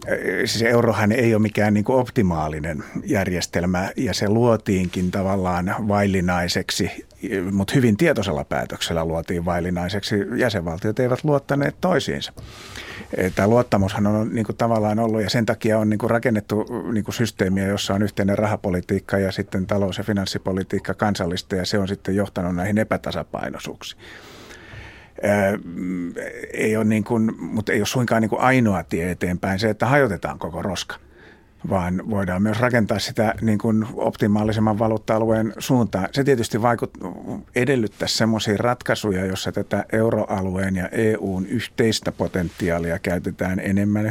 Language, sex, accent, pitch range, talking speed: Finnish, male, native, 95-110 Hz, 130 wpm